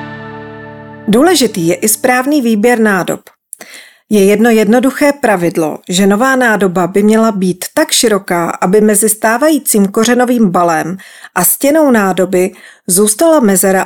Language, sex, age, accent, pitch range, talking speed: Czech, female, 40-59, native, 190-245 Hz, 120 wpm